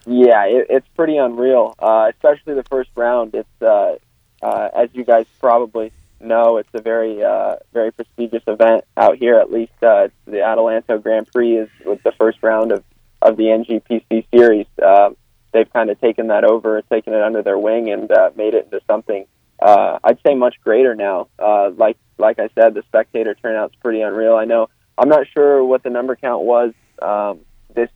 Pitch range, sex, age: 110-125 Hz, male, 20-39